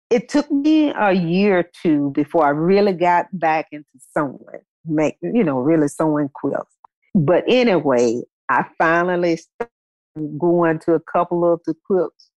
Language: English